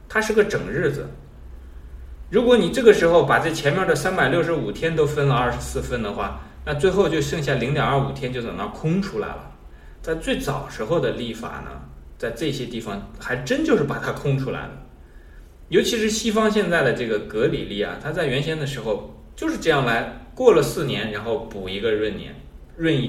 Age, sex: 20-39, male